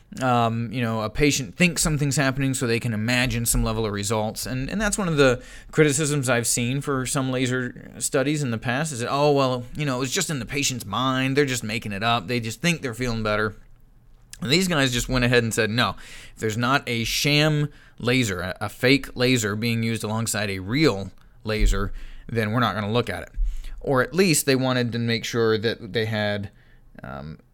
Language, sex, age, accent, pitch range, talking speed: English, male, 30-49, American, 110-135 Hz, 220 wpm